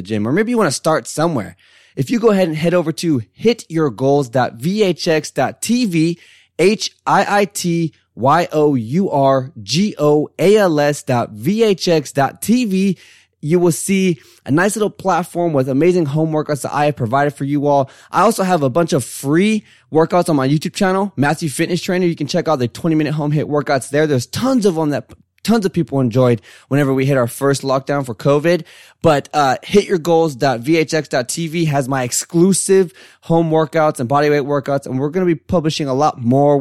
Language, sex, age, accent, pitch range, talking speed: English, male, 20-39, American, 130-175 Hz, 160 wpm